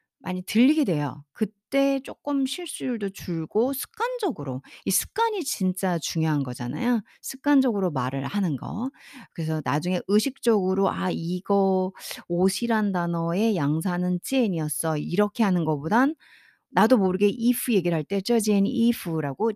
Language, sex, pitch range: Korean, female, 150-225 Hz